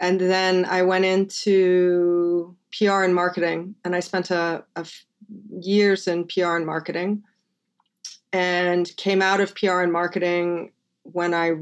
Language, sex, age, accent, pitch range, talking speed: English, female, 30-49, American, 165-190 Hz, 145 wpm